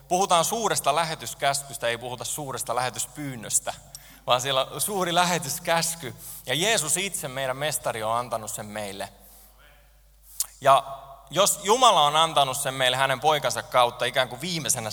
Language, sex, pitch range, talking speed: Finnish, male, 115-155 Hz, 135 wpm